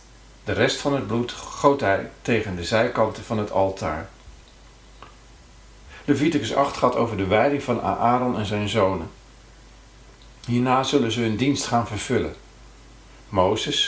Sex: male